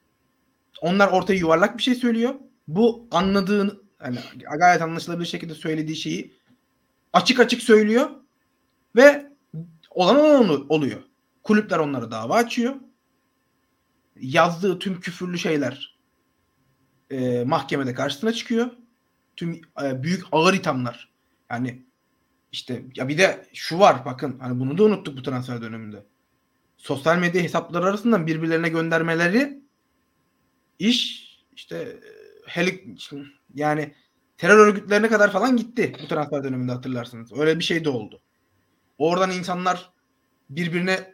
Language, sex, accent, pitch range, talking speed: Turkish, male, native, 145-210 Hz, 115 wpm